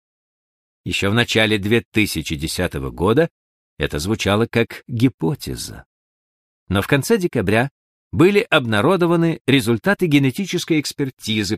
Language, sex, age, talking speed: Russian, male, 50-69, 95 wpm